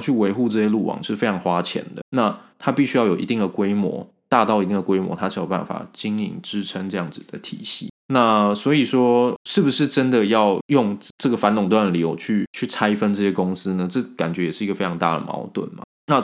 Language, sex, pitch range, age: Chinese, male, 95-125 Hz, 20-39